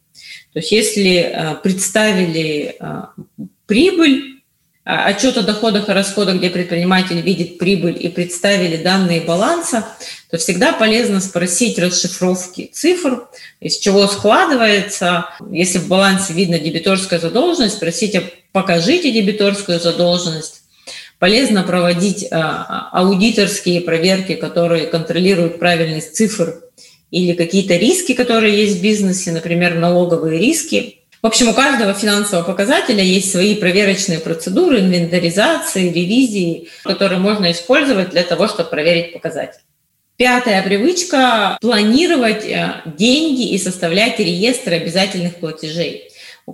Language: Russian